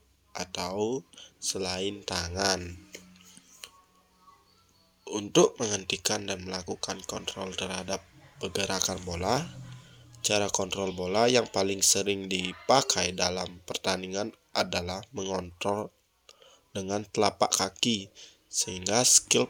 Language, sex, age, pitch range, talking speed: Indonesian, male, 20-39, 95-120 Hz, 85 wpm